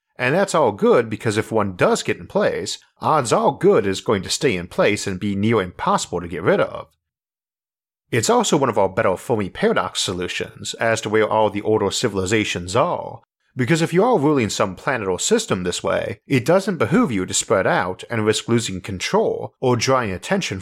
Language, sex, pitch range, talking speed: English, male, 100-130 Hz, 205 wpm